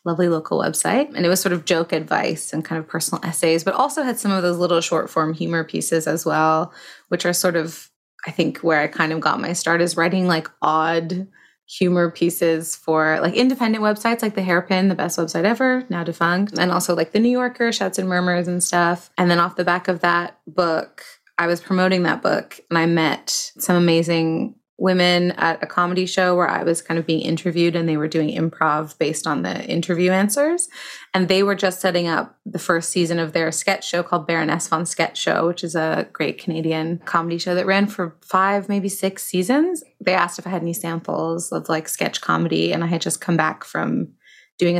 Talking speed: 215 wpm